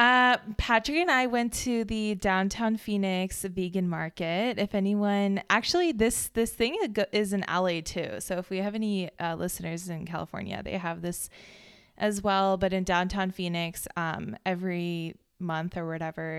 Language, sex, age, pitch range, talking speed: English, female, 20-39, 175-210 Hz, 160 wpm